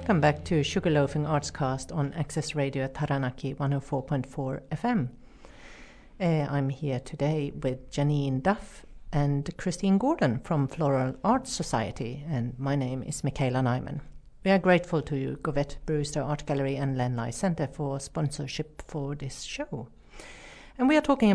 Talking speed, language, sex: 150 wpm, English, female